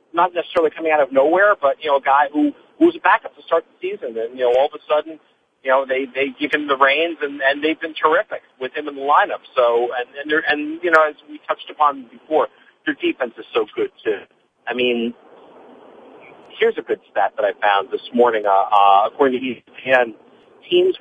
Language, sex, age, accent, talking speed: English, male, 40-59, American, 220 wpm